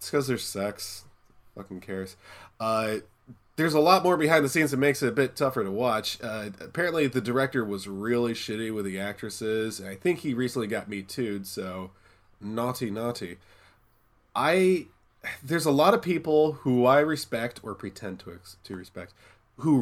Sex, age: male, 20-39